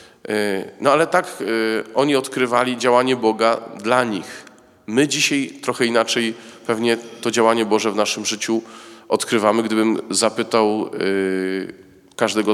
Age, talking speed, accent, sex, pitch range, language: 40-59, 115 wpm, native, male, 110-155 Hz, Polish